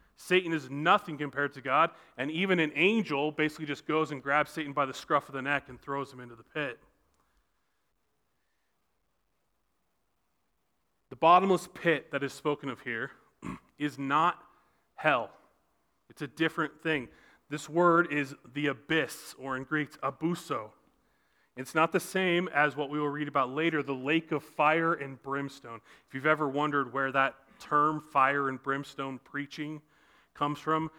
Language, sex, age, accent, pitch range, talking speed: English, male, 30-49, American, 140-165 Hz, 160 wpm